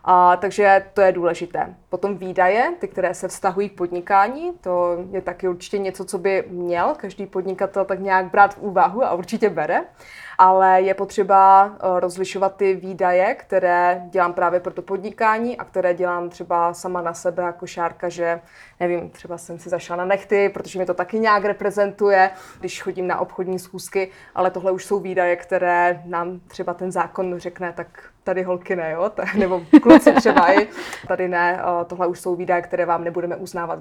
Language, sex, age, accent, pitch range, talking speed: Czech, female, 20-39, native, 180-200 Hz, 175 wpm